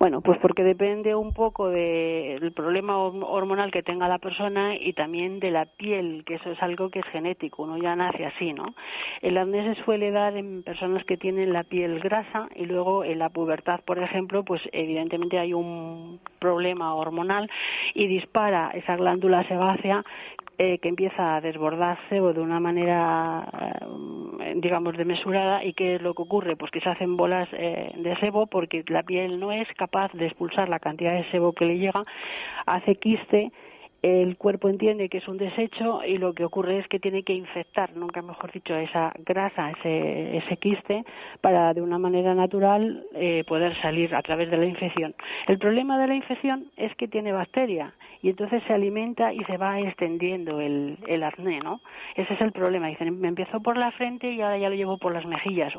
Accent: Spanish